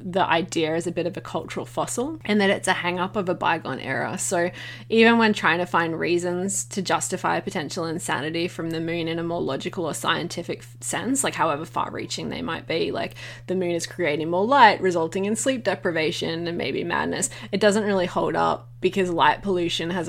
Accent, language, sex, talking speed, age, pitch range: Australian, English, female, 210 wpm, 20-39, 165-190 Hz